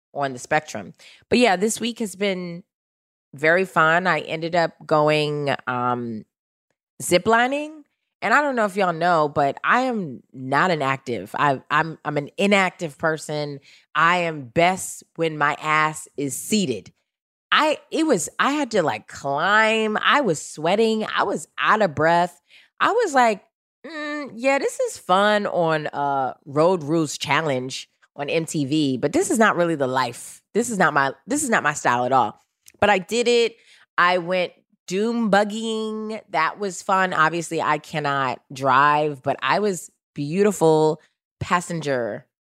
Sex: female